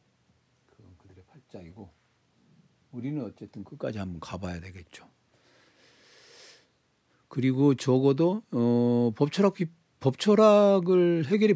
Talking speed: 60 wpm